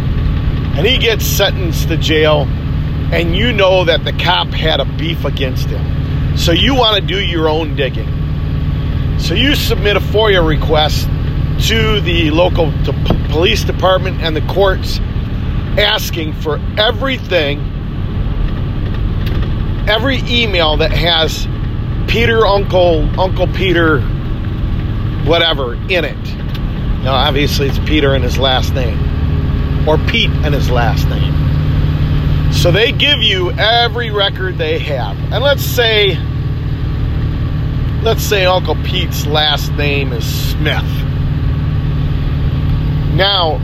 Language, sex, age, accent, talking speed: English, male, 40-59, American, 120 wpm